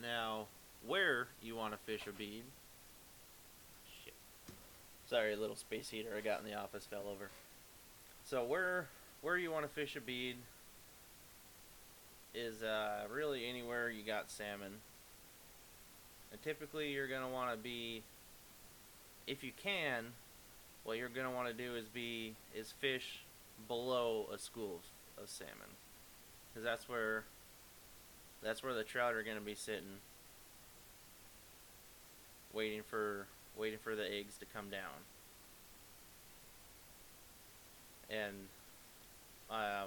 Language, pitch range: English, 105-125 Hz